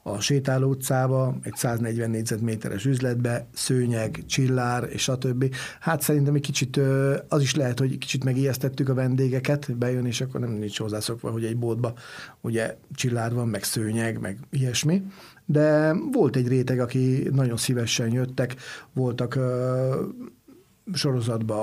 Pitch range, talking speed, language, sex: 120-140 Hz, 140 wpm, Hungarian, male